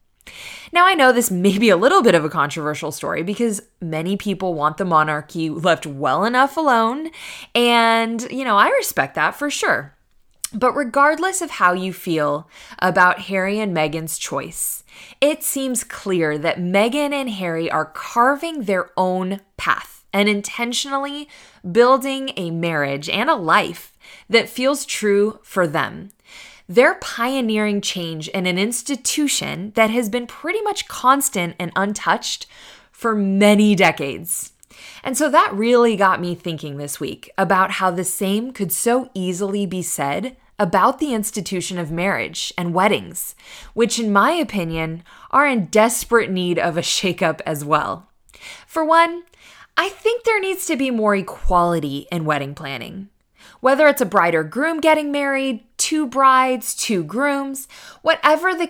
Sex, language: female, English